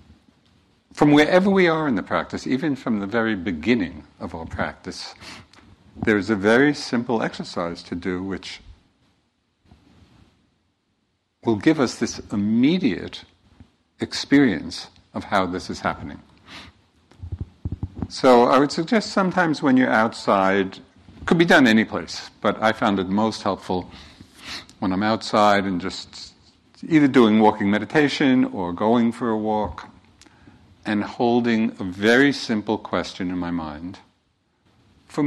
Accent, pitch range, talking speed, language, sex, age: American, 95-120 Hz, 135 wpm, English, male, 60-79